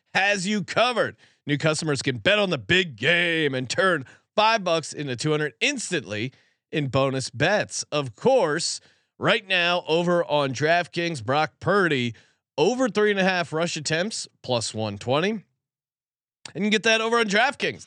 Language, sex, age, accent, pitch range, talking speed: English, male, 30-49, American, 135-185 Hz, 160 wpm